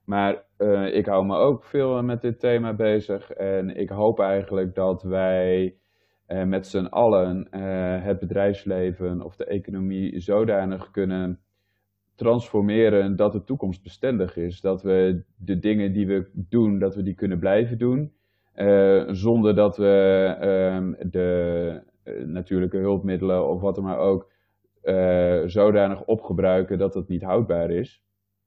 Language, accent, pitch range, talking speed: Dutch, Dutch, 95-100 Hz, 145 wpm